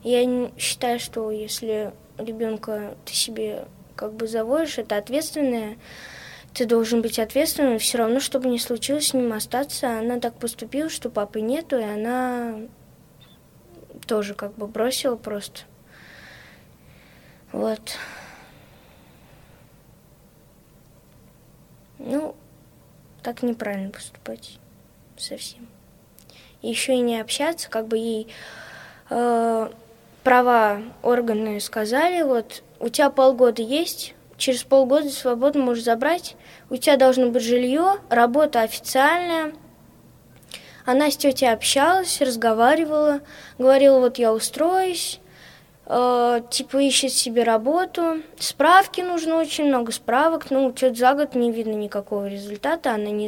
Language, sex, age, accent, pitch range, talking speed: Russian, female, 20-39, native, 225-280 Hz, 115 wpm